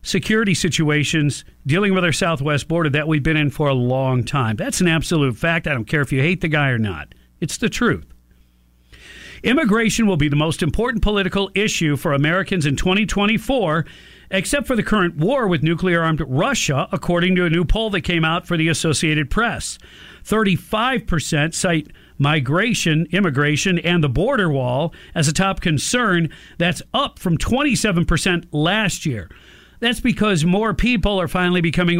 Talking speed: 165 wpm